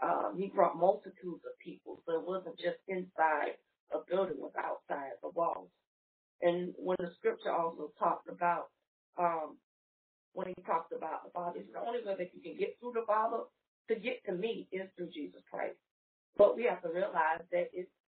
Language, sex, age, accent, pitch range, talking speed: English, female, 40-59, American, 165-205 Hz, 190 wpm